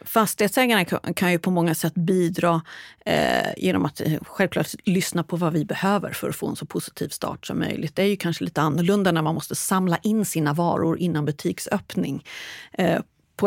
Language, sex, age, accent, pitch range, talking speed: Swedish, female, 30-49, native, 170-210 Hz, 180 wpm